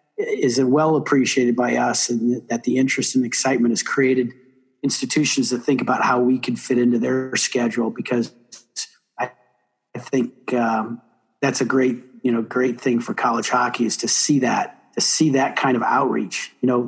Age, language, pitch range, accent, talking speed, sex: 40-59, English, 125-140 Hz, American, 180 wpm, male